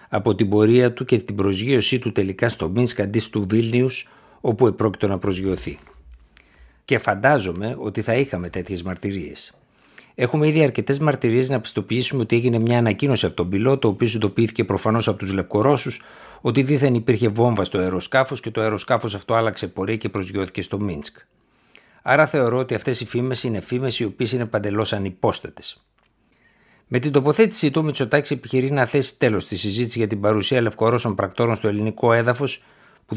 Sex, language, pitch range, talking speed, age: male, Greek, 100-125 Hz, 170 wpm, 60-79